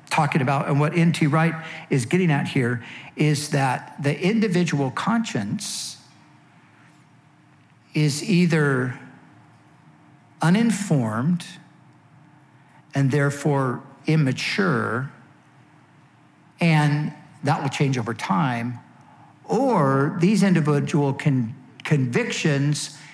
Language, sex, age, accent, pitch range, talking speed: English, male, 60-79, American, 145-180 Hz, 80 wpm